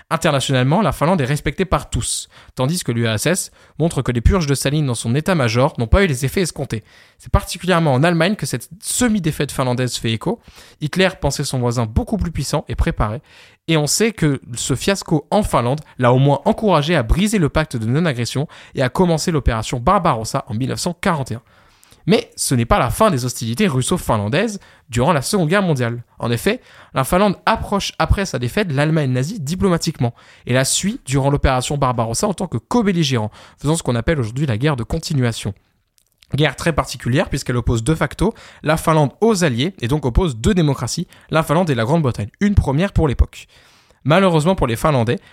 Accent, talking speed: French, 190 wpm